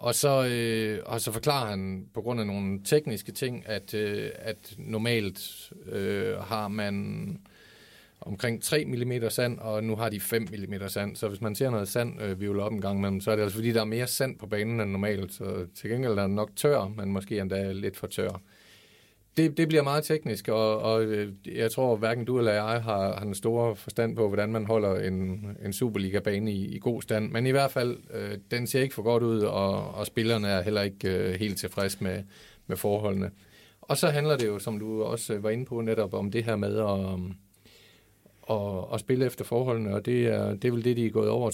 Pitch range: 100-120 Hz